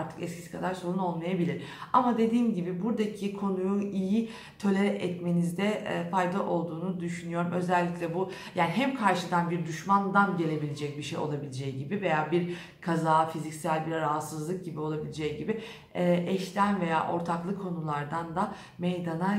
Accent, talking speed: native, 140 wpm